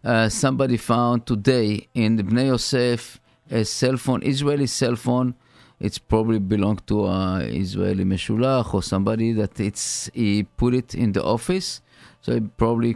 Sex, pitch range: male, 105-125 Hz